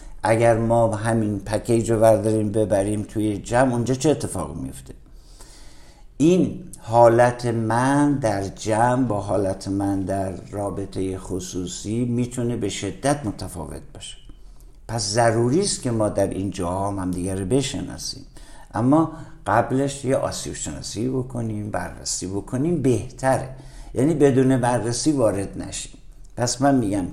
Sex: male